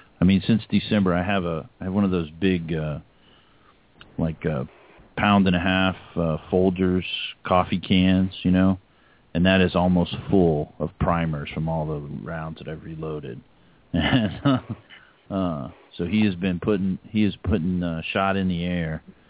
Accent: American